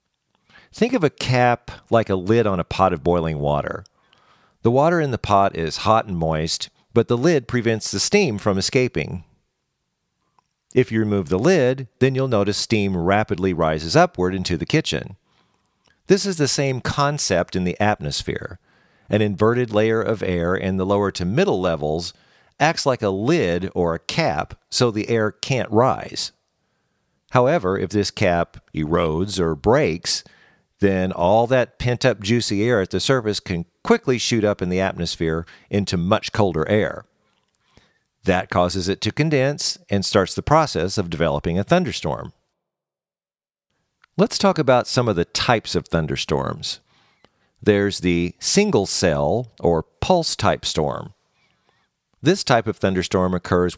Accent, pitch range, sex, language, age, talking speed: American, 90-125 Hz, male, English, 50-69, 150 wpm